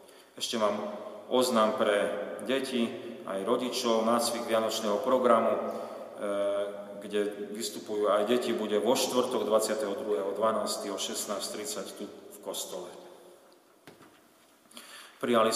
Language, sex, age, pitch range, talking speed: Slovak, male, 30-49, 105-120 Hz, 95 wpm